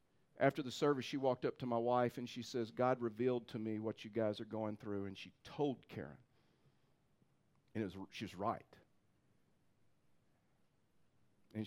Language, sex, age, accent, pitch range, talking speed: English, male, 50-69, American, 110-155 Hz, 165 wpm